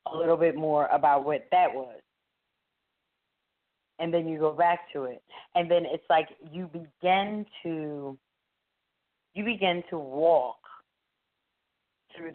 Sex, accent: female, American